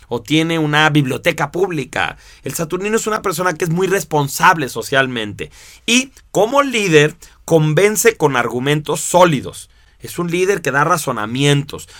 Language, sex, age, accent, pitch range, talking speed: Spanish, male, 30-49, Mexican, 125-170 Hz, 140 wpm